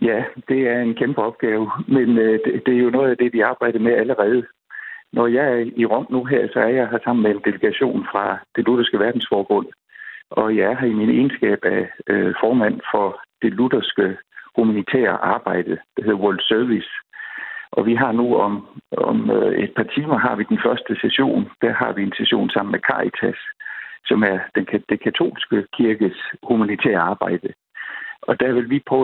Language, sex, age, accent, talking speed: Danish, male, 60-79, native, 180 wpm